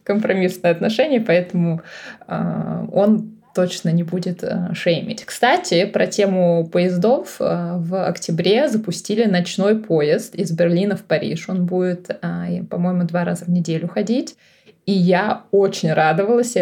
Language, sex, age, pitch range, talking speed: Russian, female, 20-39, 175-210 Hz, 135 wpm